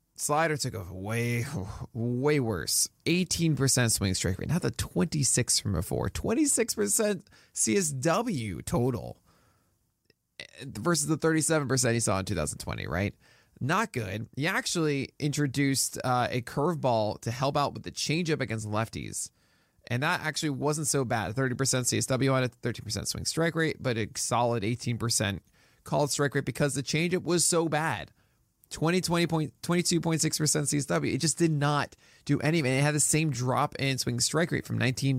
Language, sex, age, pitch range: English, male, 20-39, 115-155 Hz